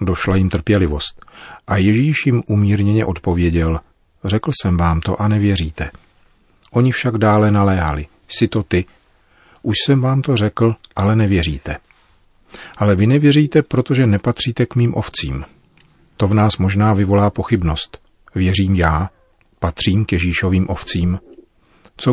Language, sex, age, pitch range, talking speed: Czech, male, 40-59, 85-105 Hz, 135 wpm